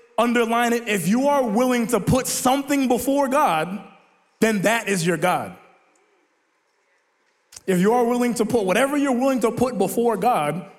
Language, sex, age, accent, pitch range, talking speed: English, male, 20-39, American, 195-250 Hz, 160 wpm